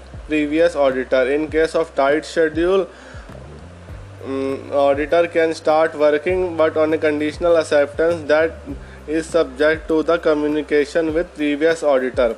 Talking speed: 125 wpm